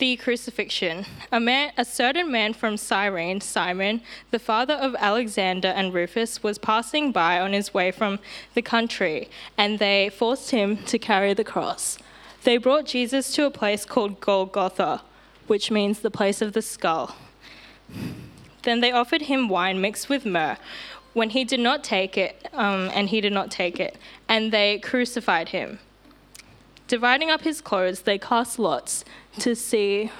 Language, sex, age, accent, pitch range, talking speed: English, female, 10-29, Australian, 195-240 Hz, 165 wpm